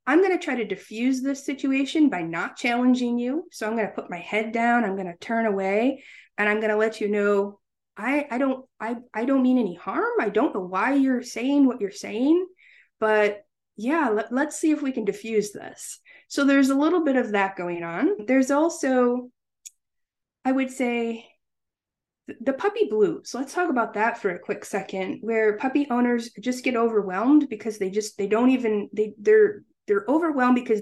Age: 20-39